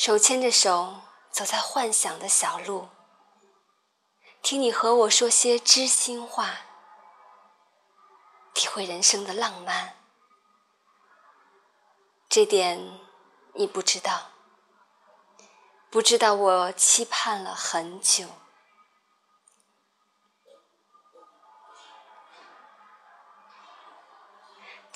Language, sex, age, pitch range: Chinese, female, 20-39, 200-260 Hz